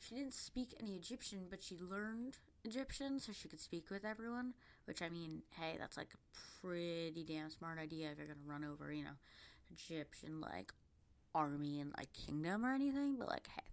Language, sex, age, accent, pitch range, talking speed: English, female, 20-39, American, 160-215 Hz, 195 wpm